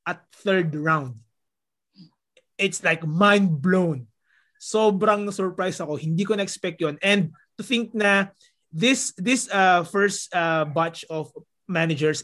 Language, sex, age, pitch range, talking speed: English, male, 20-39, 155-195 Hz, 130 wpm